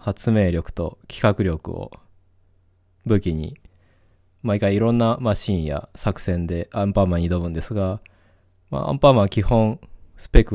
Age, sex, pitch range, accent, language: 20-39, male, 90-100 Hz, native, Japanese